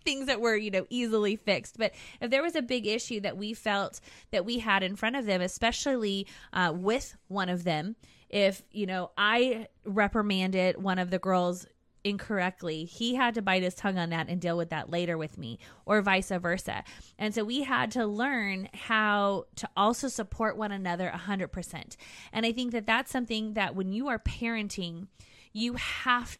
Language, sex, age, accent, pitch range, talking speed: English, female, 20-39, American, 185-230 Hz, 190 wpm